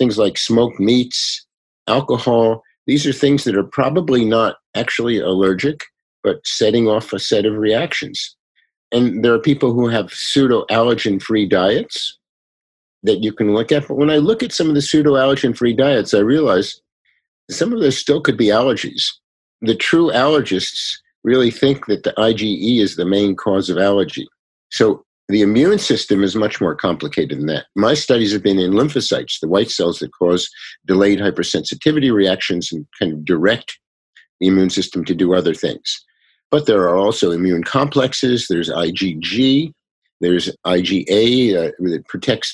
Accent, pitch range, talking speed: American, 100-135 Hz, 165 wpm